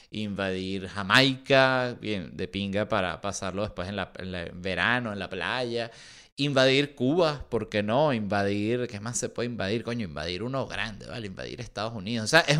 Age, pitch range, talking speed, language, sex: 30-49, 105-140 Hz, 185 wpm, Spanish, male